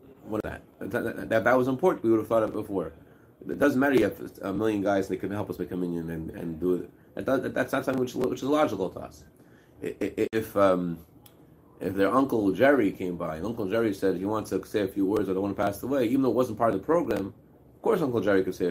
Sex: male